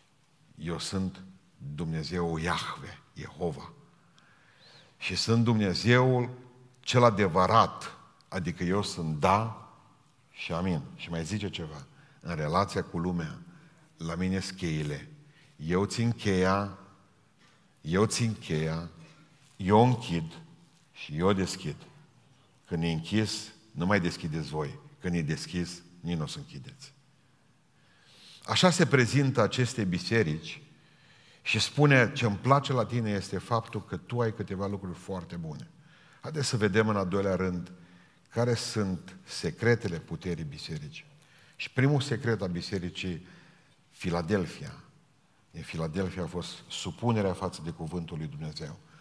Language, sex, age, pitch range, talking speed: Romanian, male, 50-69, 90-130 Hz, 125 wpm